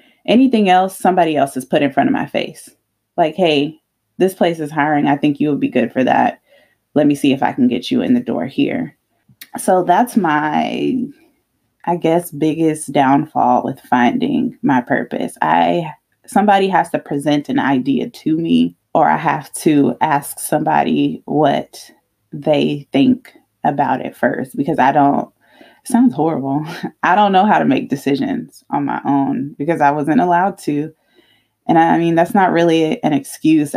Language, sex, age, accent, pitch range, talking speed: English, female, 20-39, American, 145-235 Hz, 170 wpm